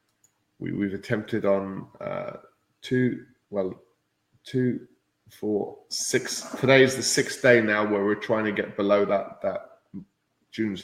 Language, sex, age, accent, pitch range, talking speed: English, male, 20-39, British, 105-125 Hz, 135 wpm